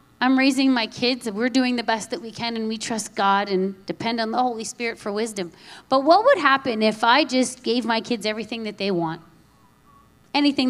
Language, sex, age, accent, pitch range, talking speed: English, female, 30-49, American, 210-270 Hz, 220 wpm